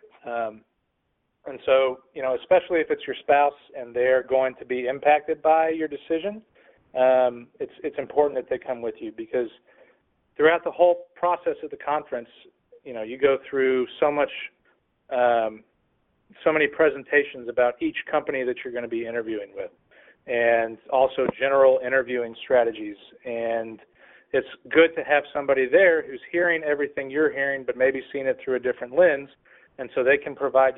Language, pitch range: English, 125-155 Hz